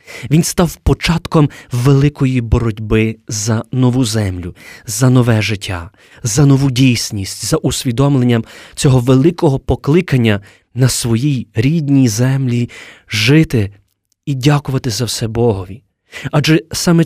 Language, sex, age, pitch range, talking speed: Ukrainian, male, 20-39, 110-145 Hz, 110 wpm